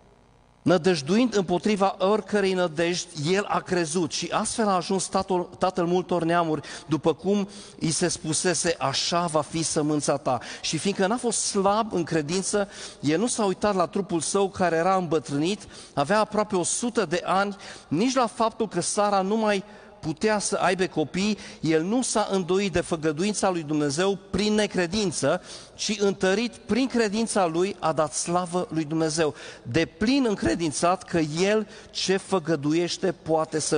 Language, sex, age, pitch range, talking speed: Romanian, male, 40-59, 160-205 Hz, 155 wpm